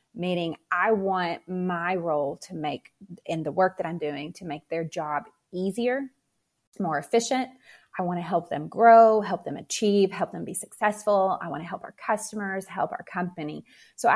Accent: American